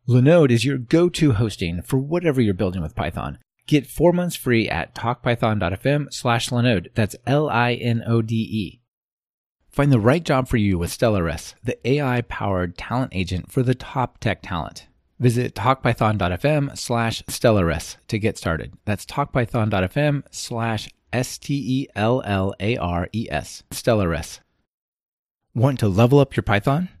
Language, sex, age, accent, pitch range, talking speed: English, male, 30-49, American, 95-130 Hz, 125 wpm